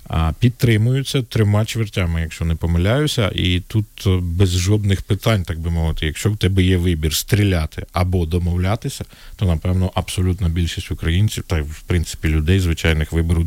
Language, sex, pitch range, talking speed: Ukrainian, male, 85-105 Hz, 145 wpm